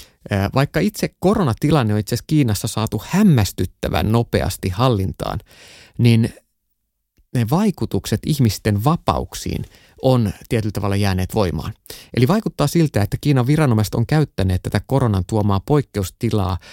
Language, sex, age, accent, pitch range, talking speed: Finnish, male, 30-49, native, 100-130 Hz, 120 wpm